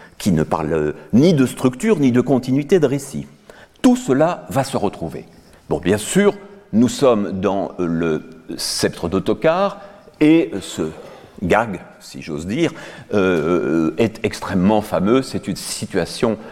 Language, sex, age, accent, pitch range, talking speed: French, male, 60-79, French, 100-160 Hz, 140 wpm